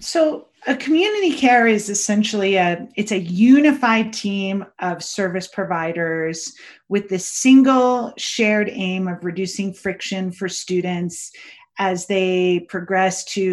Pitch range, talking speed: 185-230 Hz, 125 wpm